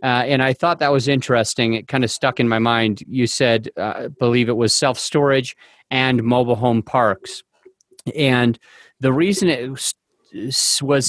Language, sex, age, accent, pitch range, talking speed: English, male, 30-49, American, 130-150 Hz, 170 wpm